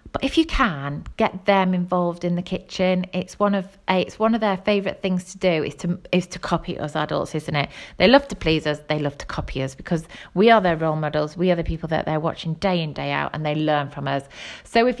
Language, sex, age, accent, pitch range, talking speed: English, female, 30-49, British, 170-210 Hz, 255 wpm